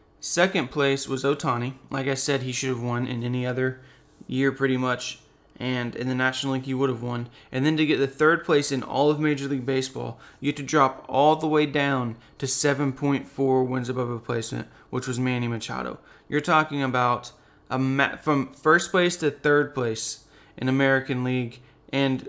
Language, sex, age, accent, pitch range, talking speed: English, male, 20-39, American, 130-150 Hz, 195 wpm